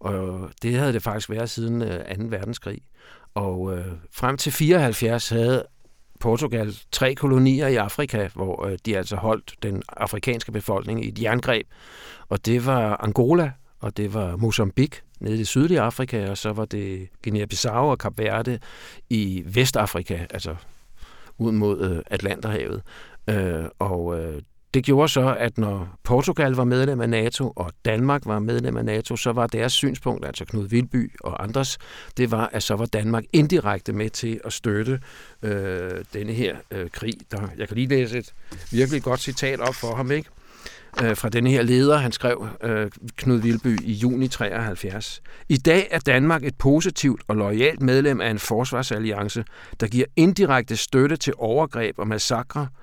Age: 60-79